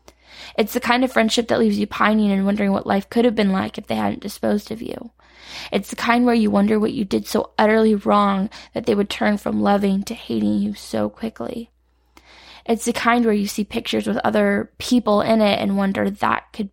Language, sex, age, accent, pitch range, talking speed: English, female, 10-29, American, 195-230 Hz, 220 wpm